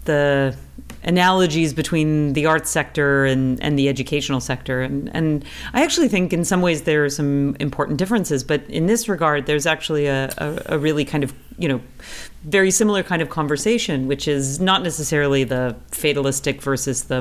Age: 40-59